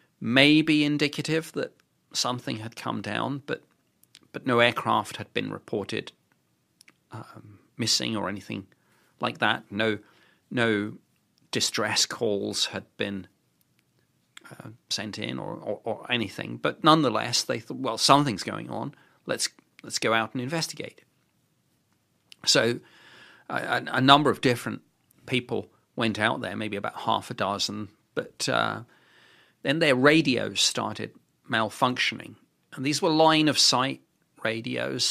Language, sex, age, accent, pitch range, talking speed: English, male, 40-59, British, 110-145 Hz, 130 wpm